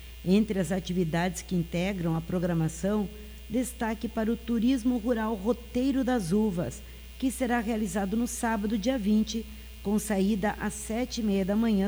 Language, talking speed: Portuguese, 140 wpm